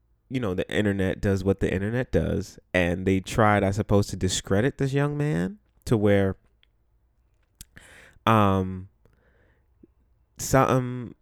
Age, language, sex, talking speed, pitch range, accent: 20-39, English, male, 125 wpm, 95-115 Hz, American